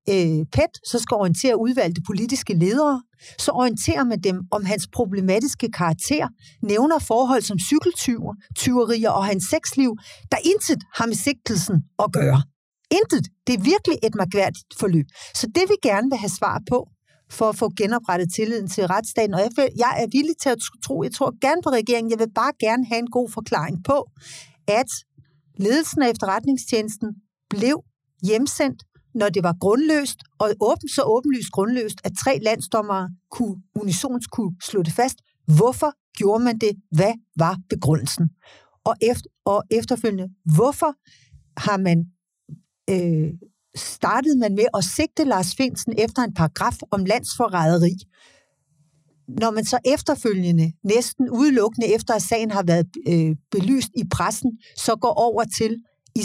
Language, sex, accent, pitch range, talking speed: Danish, female, native, 180-245 Hz, 155 wpm